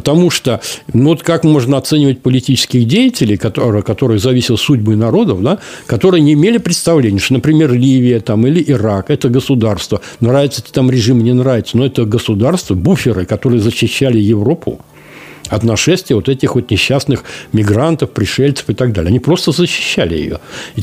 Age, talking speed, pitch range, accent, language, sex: 60-79, 160 wpm, 120-160 Hz, native, Russian, male